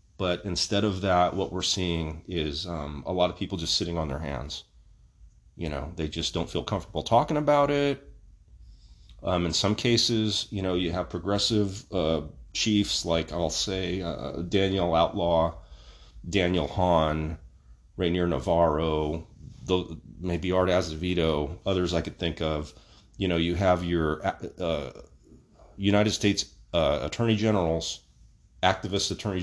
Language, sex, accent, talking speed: English, male, American, 145 wpm